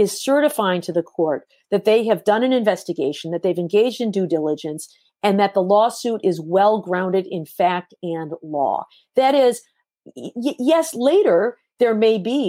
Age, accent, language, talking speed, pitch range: 50-69, American, English, 165 wpm, 190-245 Hz